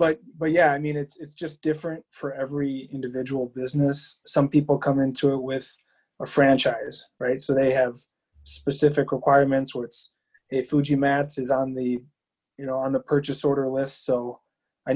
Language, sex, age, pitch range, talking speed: English, male, 20-39, 125-140 Hz, 175 wpm